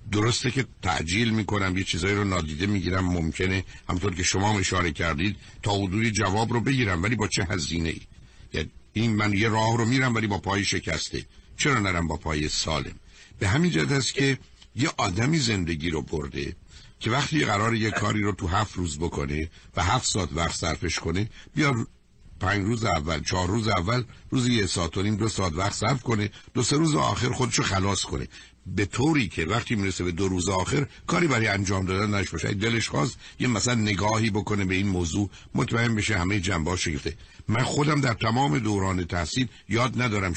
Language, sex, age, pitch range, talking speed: Persian, male, 60-79, 90-110 Hz, 185 wpm